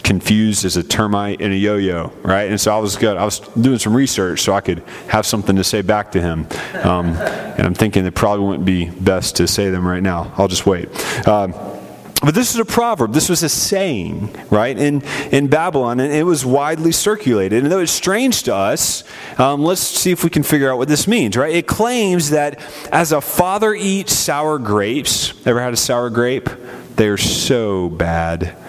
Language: English